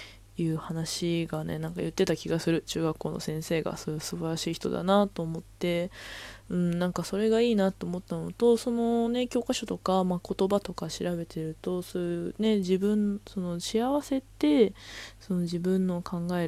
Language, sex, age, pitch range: Japanese, female, 20-39, 160-200 Hz